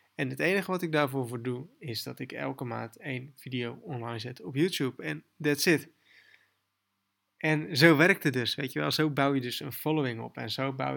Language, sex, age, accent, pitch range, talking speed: Dutch, male, 20-39, Dutch, 120-140 Hz, 220 wpm